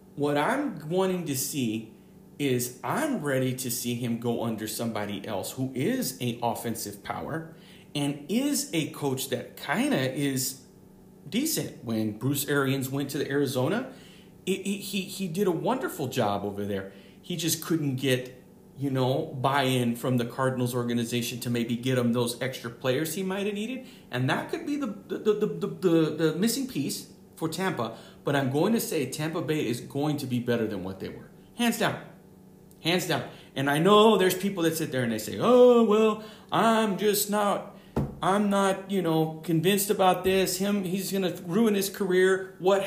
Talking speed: 185 wpm